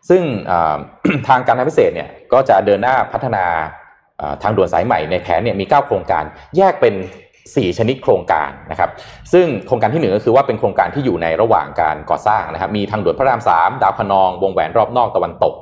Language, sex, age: Thai, male, 20-39